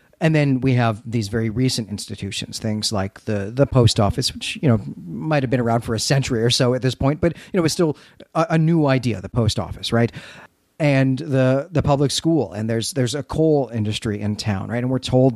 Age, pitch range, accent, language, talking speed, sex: 40-59, 115-140 Hz, American, English, 235 wpm, male